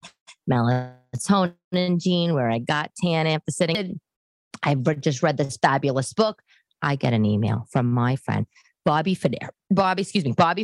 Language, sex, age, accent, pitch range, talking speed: English, female, 20-39, American, 145-190 Hz, 165 wpm